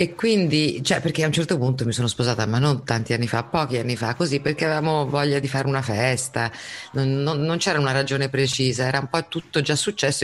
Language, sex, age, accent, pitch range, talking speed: Italian, female, 30-49, native, 120-150 Hz, 235 wpm